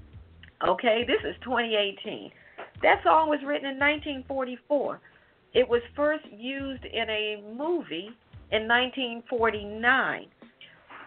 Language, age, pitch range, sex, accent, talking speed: English, 50-69, 215-290 Hz, female, American, 105 wpm